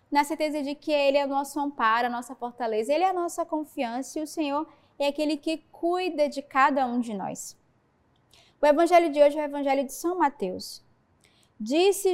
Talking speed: 200 wpm